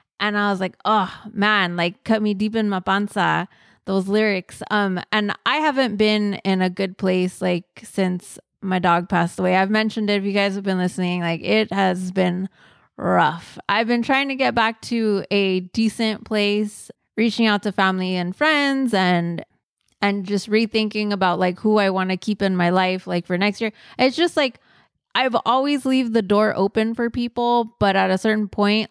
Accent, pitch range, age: American, 185-220 Hz, 20-39